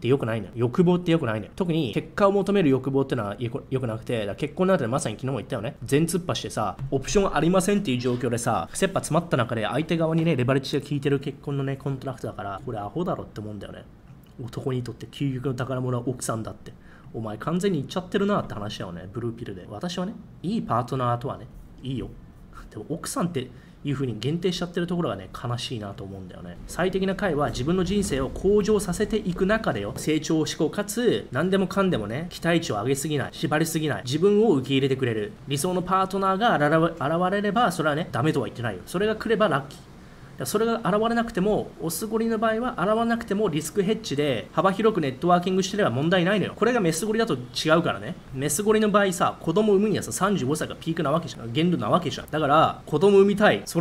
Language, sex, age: Japanese, male, 20-39